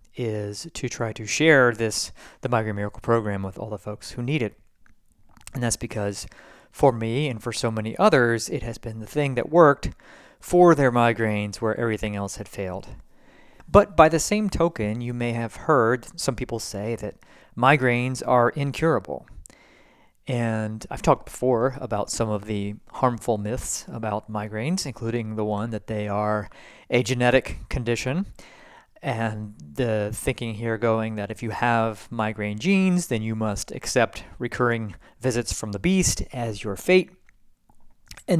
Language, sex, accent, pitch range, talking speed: English, male, American, 105-125 Hz, 160 wpm